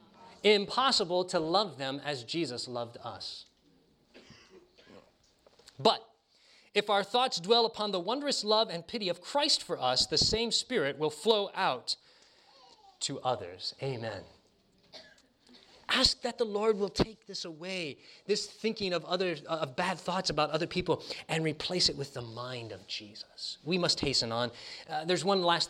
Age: 30-49